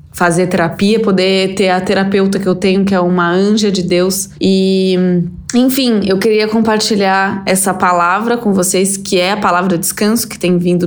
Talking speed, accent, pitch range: 175 wpm, Brazilian, 180-205 Hz